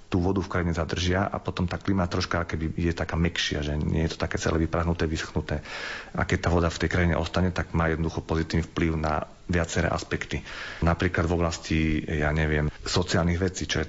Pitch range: 80-90 Hz